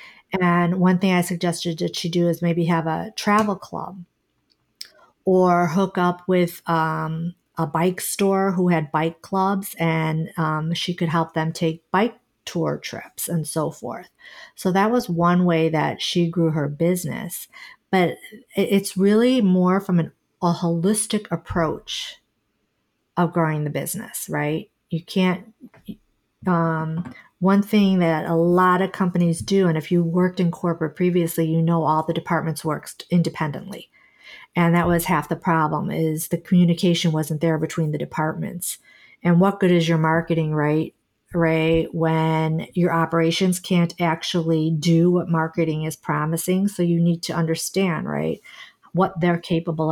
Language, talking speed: English, 155 wpm